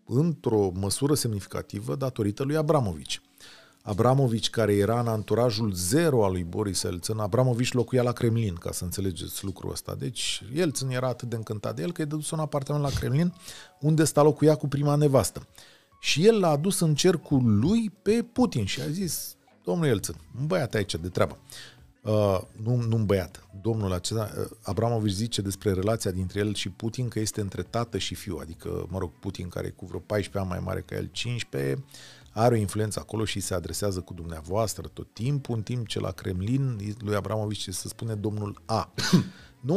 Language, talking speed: Romanian, 185 wpm